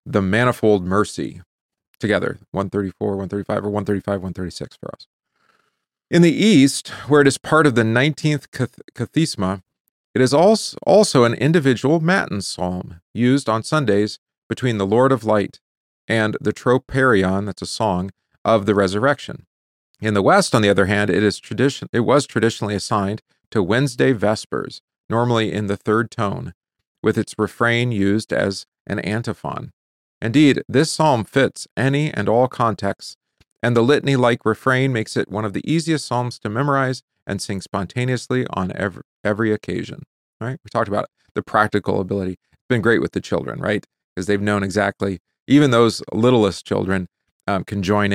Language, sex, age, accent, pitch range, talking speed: English, male, 40-59, American, 100-135 Hz, 160 wpm